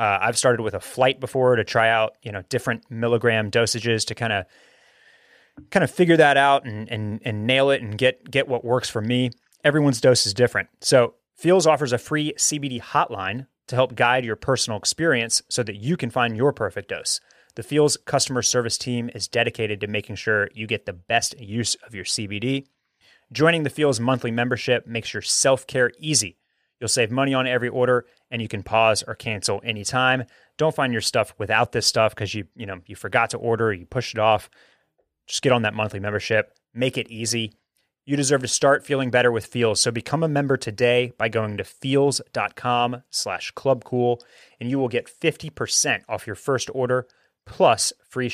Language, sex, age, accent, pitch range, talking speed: English, male, 30-49, American, 110-135 Hz, 195 wpm